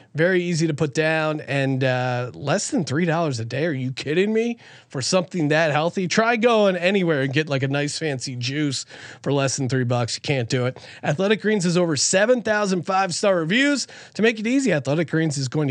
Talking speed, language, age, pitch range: 205 wpm, English, 30-49, 135-190 Hz